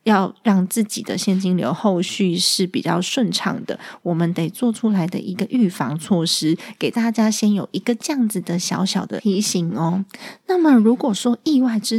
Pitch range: 175-225 Hz